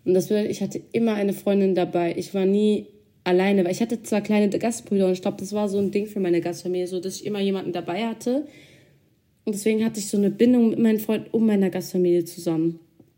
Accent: German